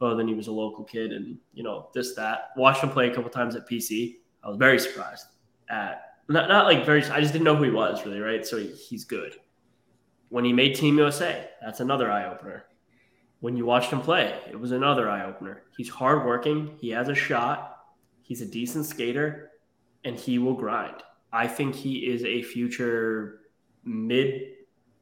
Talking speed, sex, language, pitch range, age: 195 wpm, male, English, 110-135 Hz, 10-29